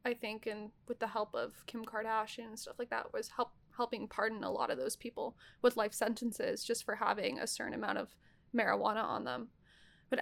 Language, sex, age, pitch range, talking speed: English, female, 20-39, 220-275 Hz, 210 wpm